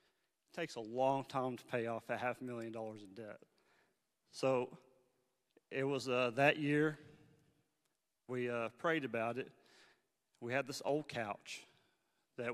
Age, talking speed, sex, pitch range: 40-59, 145 wpm, male, 120-150 Hz